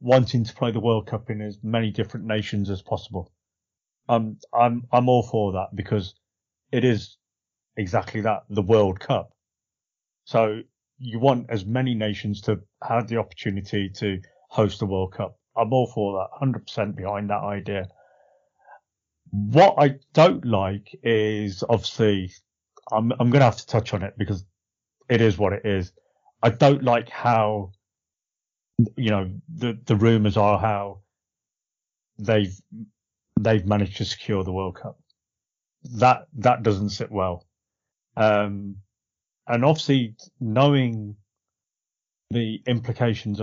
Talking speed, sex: 140 wpm, male